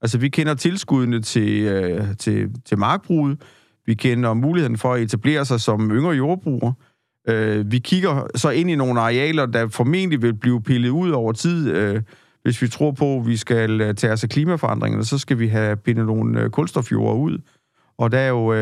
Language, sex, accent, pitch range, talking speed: Danish, male, native, 115-140 Hz, 195 wpm